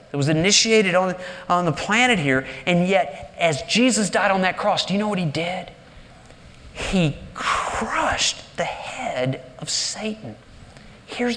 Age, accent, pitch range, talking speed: 40-59, American, 155-210 Hz, 155 wpm